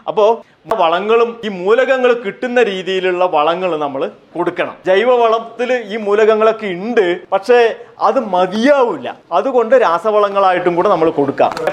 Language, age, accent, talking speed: Malayalam, 30-49, native, 115 wpm